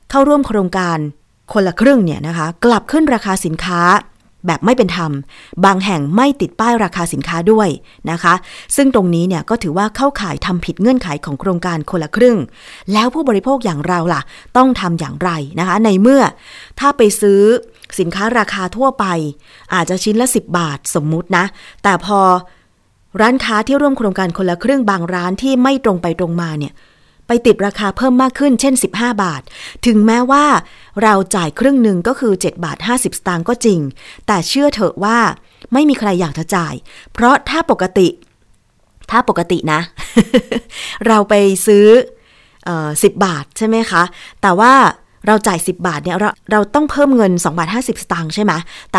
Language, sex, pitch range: Thai, female, 170-235 Hz